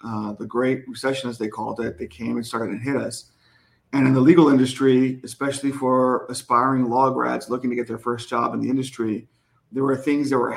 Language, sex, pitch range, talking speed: English, male, 125-140 Hz, 220 wpm